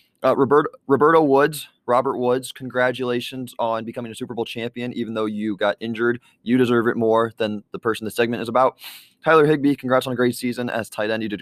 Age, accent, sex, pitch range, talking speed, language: 20-39, American, male, 115-130 Hz, 210 wpm, English